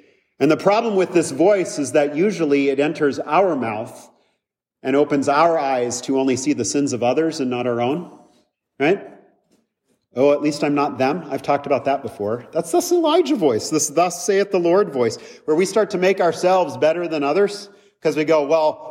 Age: 40-59